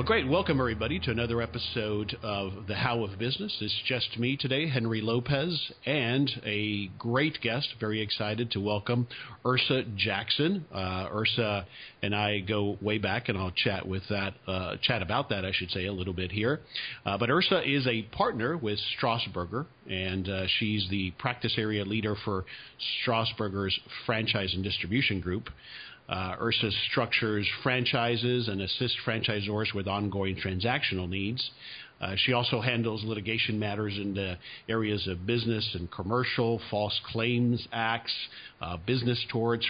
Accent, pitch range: American, 100-120 Hz